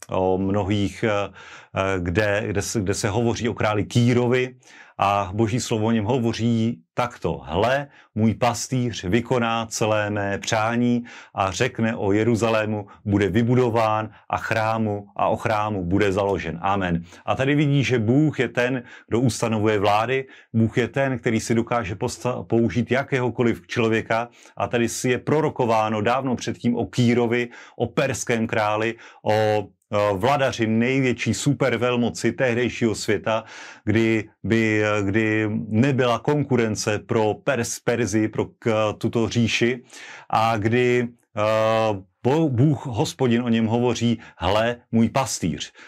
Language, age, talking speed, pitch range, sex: Slovak, 40-59, 125 wpm, 105-120 Hz, male